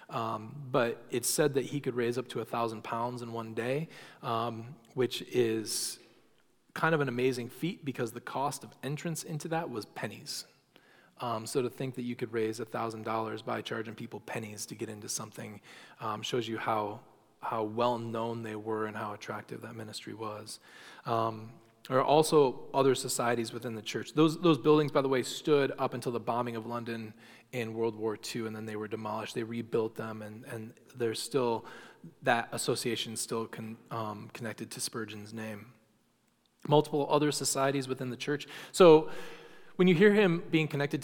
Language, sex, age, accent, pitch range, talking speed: English, male, 20-39, American, 115-140 Hz, 180 wpm